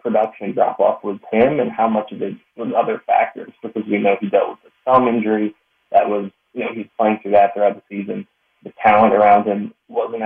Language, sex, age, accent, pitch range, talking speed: English, male, 20-39, American, 105-130 Hz, 220 wpm